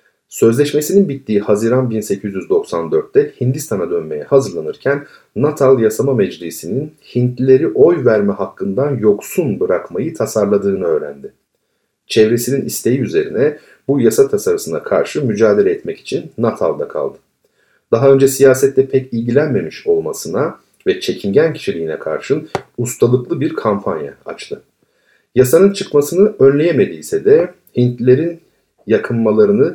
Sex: male